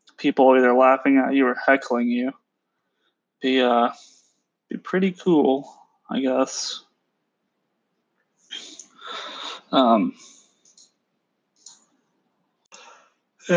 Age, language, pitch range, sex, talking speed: 20-39, English, 130-150 Hz, male, 65 wpm